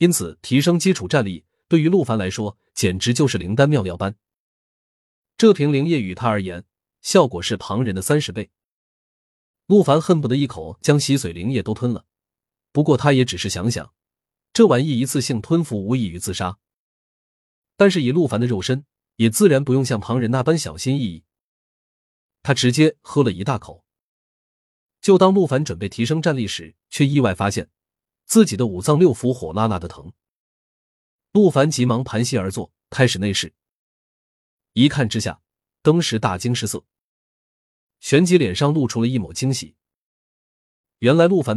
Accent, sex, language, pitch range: native, male, Chinese, 100-145 Hz